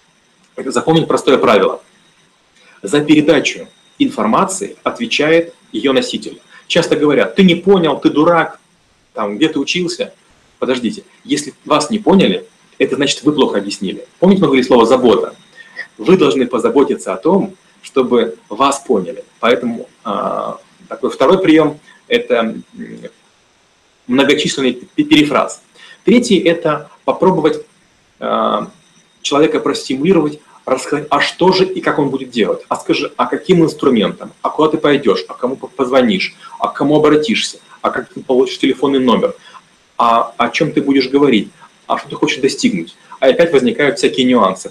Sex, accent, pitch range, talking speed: male, native, 145-210 Hz, 140 wpm